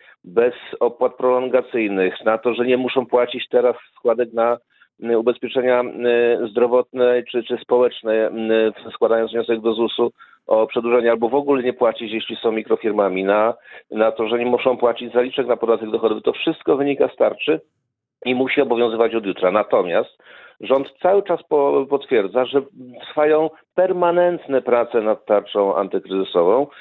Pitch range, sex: 110-140 Hz, male